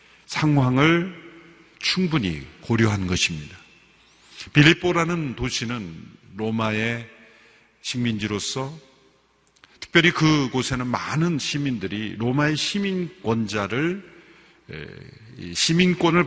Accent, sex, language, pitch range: native, male, Korean, 110-155 Hz